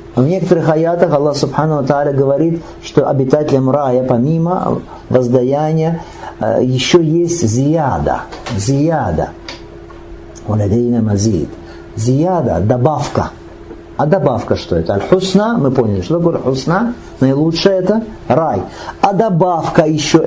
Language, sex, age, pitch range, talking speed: Russian, male, 50-69, 105-150 Hz, 100 wpm